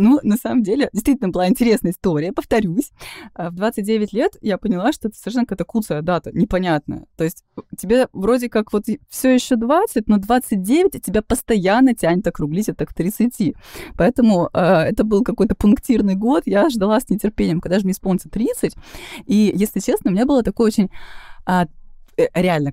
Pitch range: 175-235 Hz